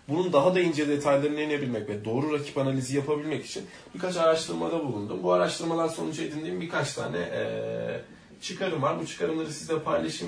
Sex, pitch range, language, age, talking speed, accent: male, 115-150 Hz, Turkish, 30-49, 165 wpm, native